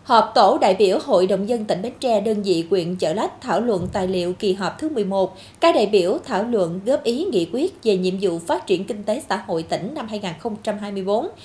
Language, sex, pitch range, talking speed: Vietnamese, female, 190-250 Hz, 230 wpm